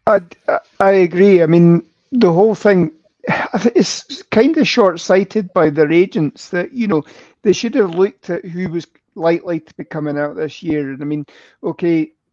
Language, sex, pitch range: English, male, 150-180 Hz